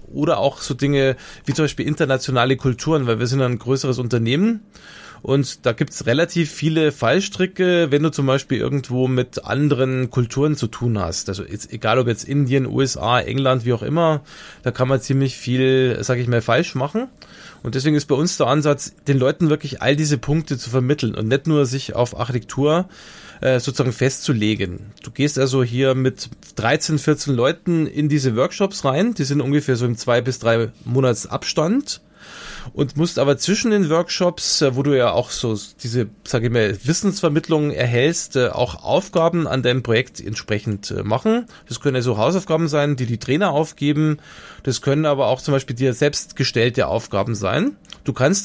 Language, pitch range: German, 125-155 Hz